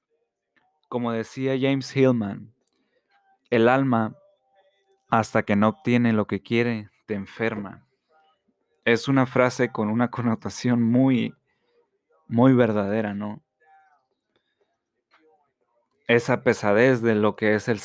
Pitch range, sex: 110-135 Hz, male